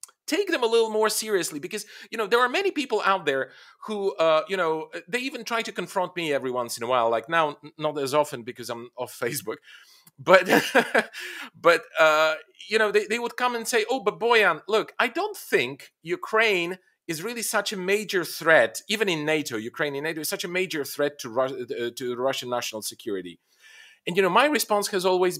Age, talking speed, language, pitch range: 40-59, 210 wpm, English, 160-215 Hz